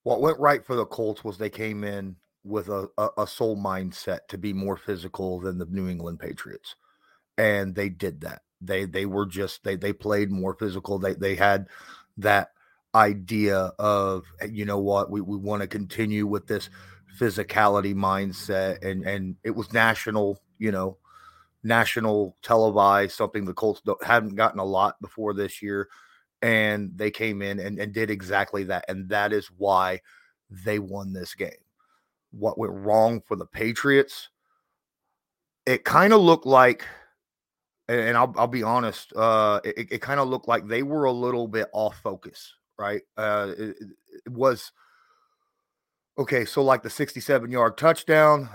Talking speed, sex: 165 wpm, male